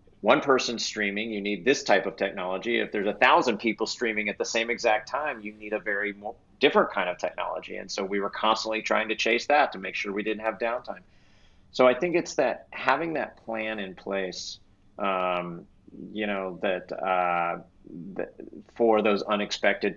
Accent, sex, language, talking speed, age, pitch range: American, male, English, 190 wpm, 30-49, 95-110 Hz